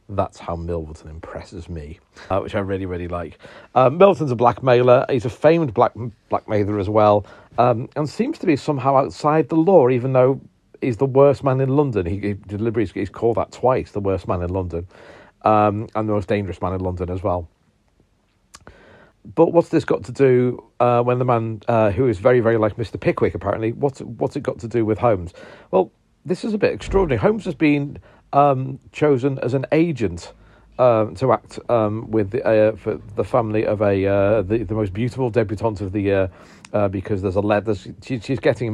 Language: English